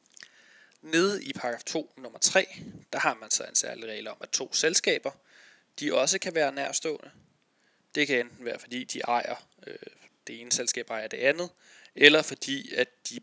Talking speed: 180 wpm